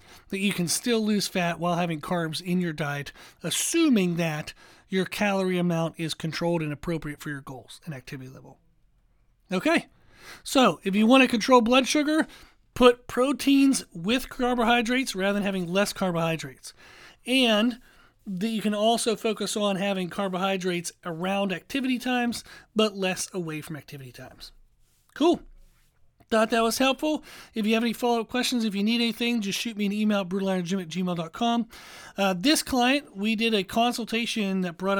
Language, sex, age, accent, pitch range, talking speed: English, male, 40-59, American, 180-230 Hz, 165 wpm